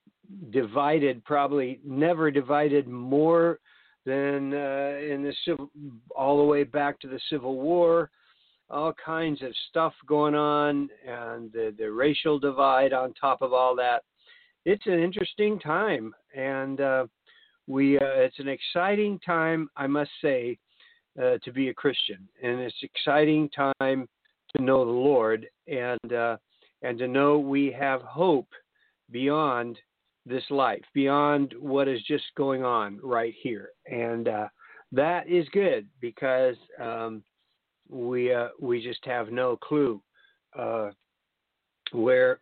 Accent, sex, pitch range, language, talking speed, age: American, male, 125-155 Hz, English, 135 wpm, 50-69